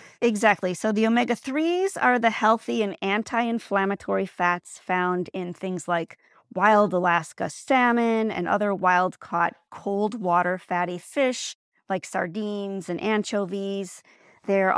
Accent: American